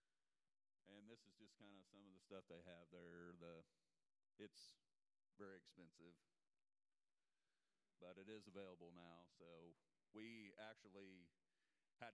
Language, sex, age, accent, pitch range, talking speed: English, male, 40-59, American, 90-115 Hz, 125 wpm